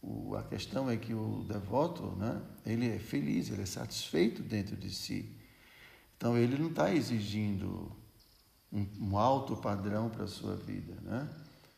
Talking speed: 160 wpm